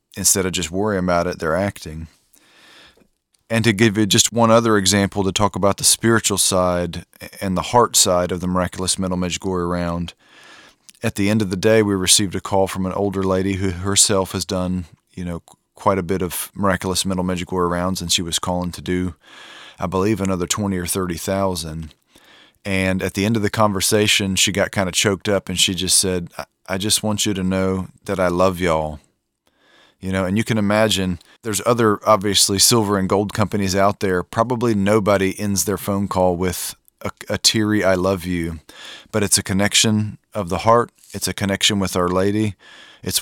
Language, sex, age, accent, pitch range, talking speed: English, male, 30-49, American, 90-105 Hz, 195 wpm